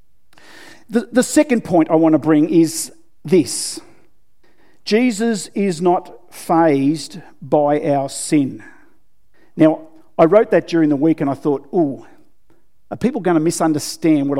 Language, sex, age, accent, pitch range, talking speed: English, male, 50-69, Australian, 165-225 Hz, 140 wpm